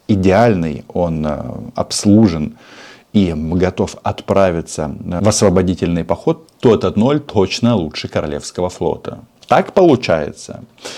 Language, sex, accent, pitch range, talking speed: Russian, male, native, 80-100 Hz, 100 wpm